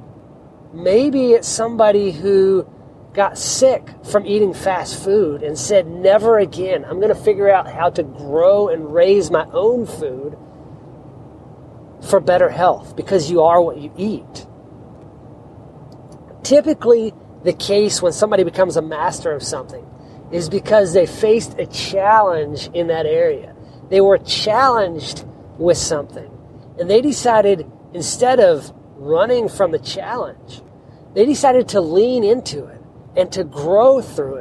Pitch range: 145-205 Hz